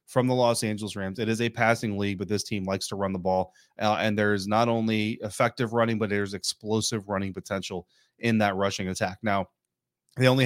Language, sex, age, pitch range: English, male, 30-49, 105-125 Hz